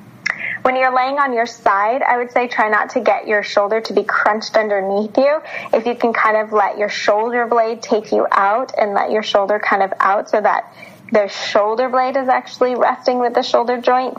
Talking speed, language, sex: 215 wpm, English, female